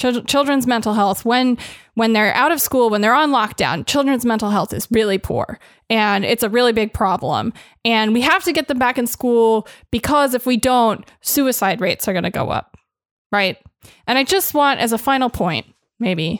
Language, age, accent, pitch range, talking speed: English, 20-39, American, 215-265 Hz, 200 wpm